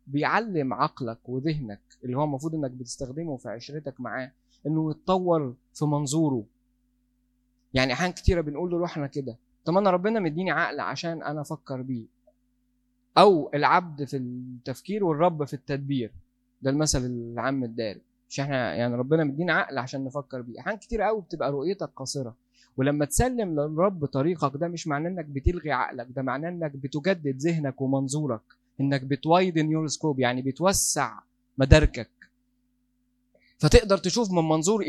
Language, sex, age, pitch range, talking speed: Arabic, male, 20-39, 130-180 Hz, 140 wpm